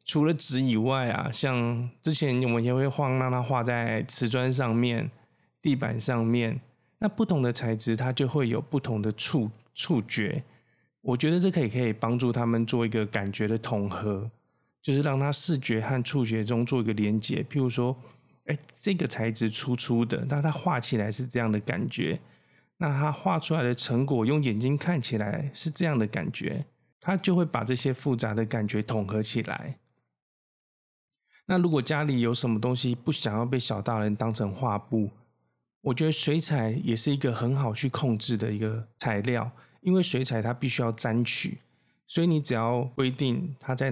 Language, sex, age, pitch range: Chinese, male, 20-39, 115-140 Hz